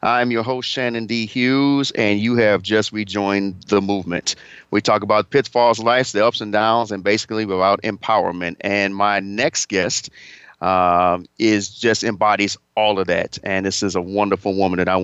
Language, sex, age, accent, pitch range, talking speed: English, male, 40-59, American, 100-120 Hz, 185 wpm